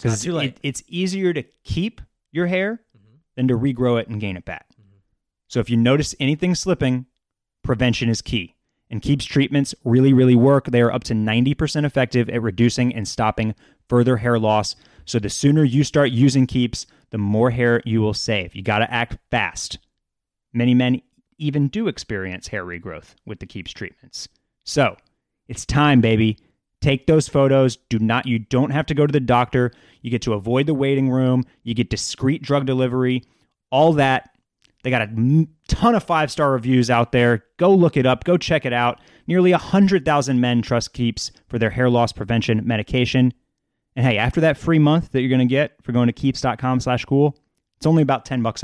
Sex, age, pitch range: male, 20-39, 115-140 Hz